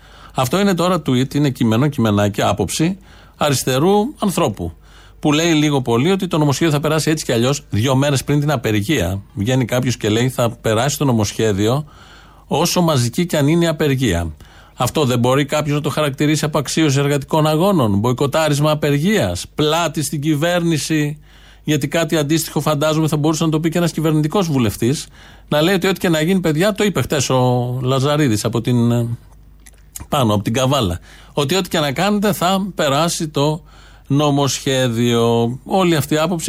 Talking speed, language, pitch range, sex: 170 wpm, Greek, 120-160 Hz, male